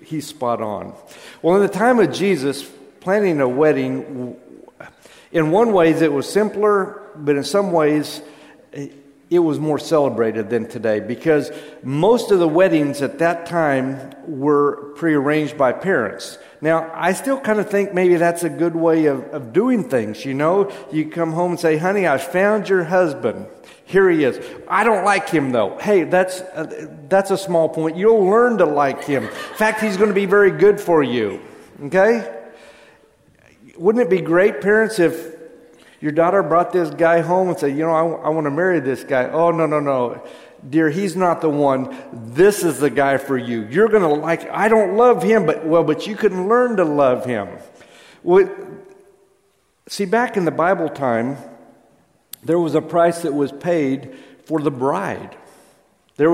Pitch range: 150-190 Hz